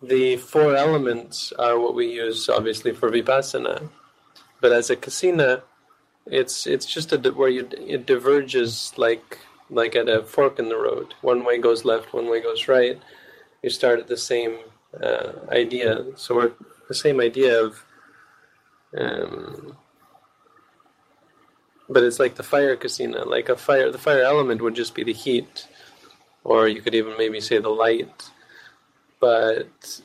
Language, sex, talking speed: English, male, 155 wpm